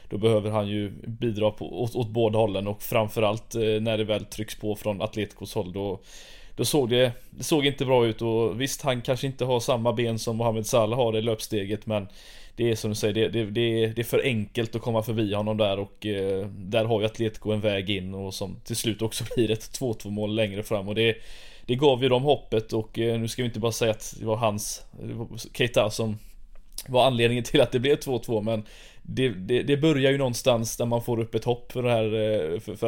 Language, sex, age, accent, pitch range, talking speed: Swedish, male, 20-39, native, 105-120 Hz, 230 wpm